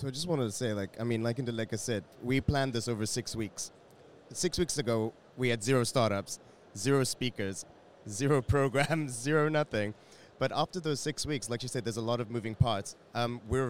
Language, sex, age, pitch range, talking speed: French, male, 30-49, 110-125 Hz, 210 wpm